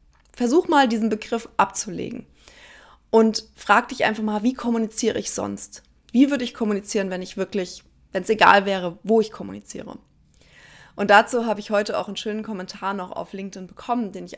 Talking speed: 180 wpm